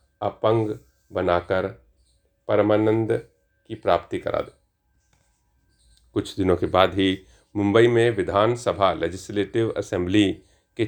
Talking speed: 100 wpm